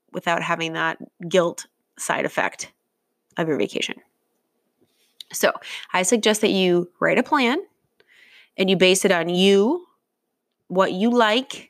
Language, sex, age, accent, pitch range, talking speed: English, female, 20-39, American, 185-225 Hz, 135 wpm